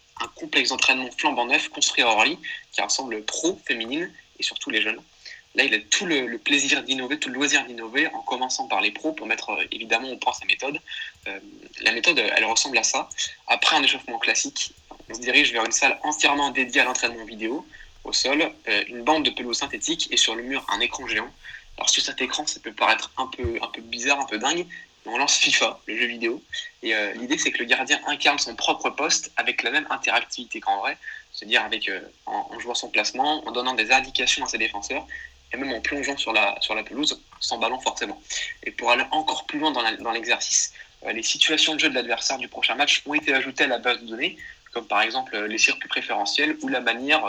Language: French